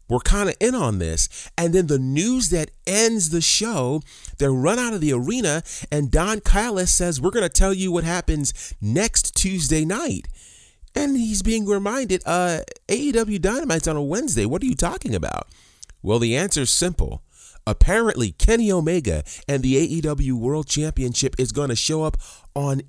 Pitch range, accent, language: 105-175 Hz, American, English